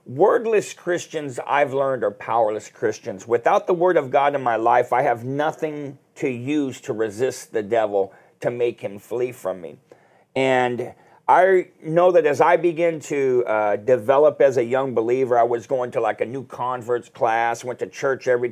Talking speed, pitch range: 185 wpm, 120-175 Hz